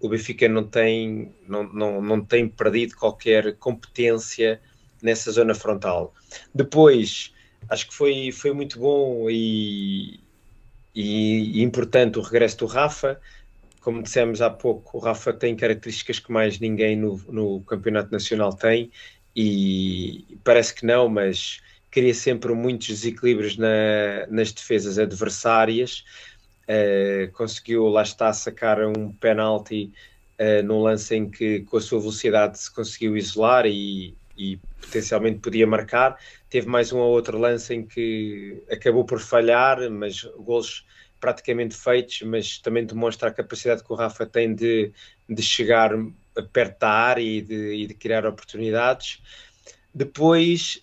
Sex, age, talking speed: male, 20-39, 135 wpm